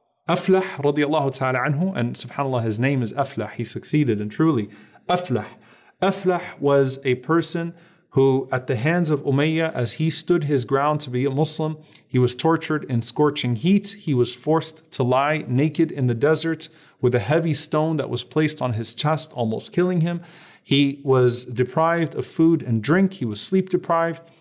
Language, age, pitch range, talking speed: English, 40-59, 125-165 Hz, 180 wpm